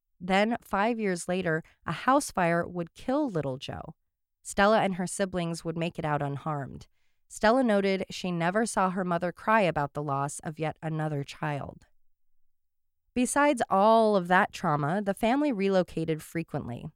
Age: 20-39